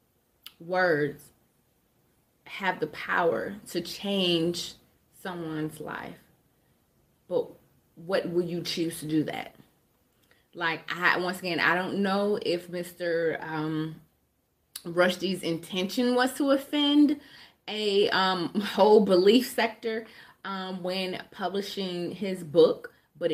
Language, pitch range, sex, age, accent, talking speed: English, 160-200 Hz, female, 20-39, American, 110 wpm